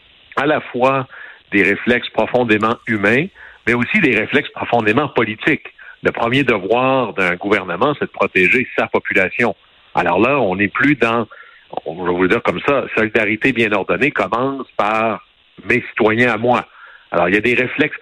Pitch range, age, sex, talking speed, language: 105-135 Hz, 60-79, male, 170 wpm, French